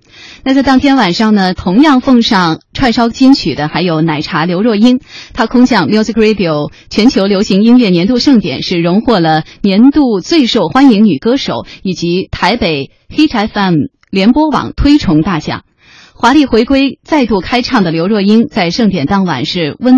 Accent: native